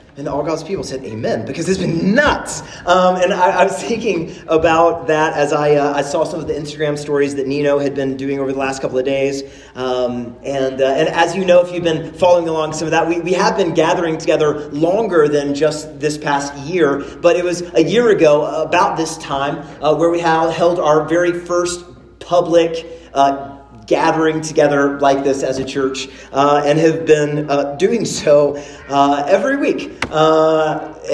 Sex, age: male, 30-49